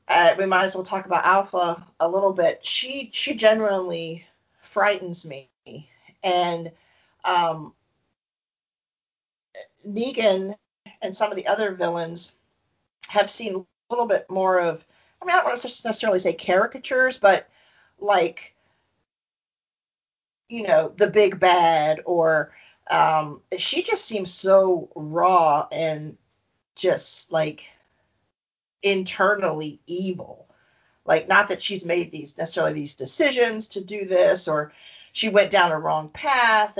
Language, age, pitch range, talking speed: English, 40-59, 165-205 Hz, 130 wpm